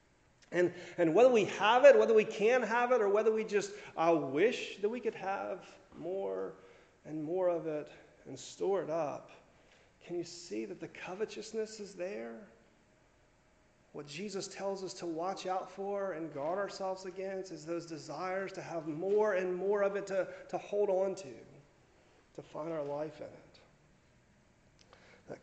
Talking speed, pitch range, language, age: 170 wpm, 145-195 Hz, English, 40-59